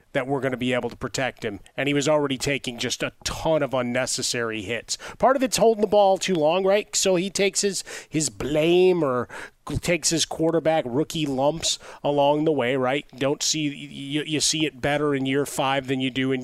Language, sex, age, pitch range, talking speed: English, male, 30-49, 125-150 Hz, 215 wpm